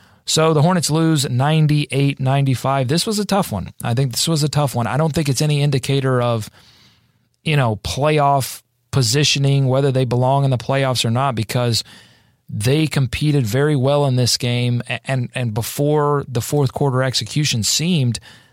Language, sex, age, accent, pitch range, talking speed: English, male, 30-49, American, 120-145 Hz, 170 wpm